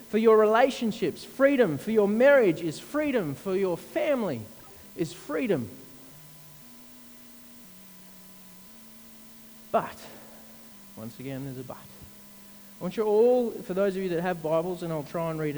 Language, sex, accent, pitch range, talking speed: English, male, Australian, 145-205 Hz, 140 wpm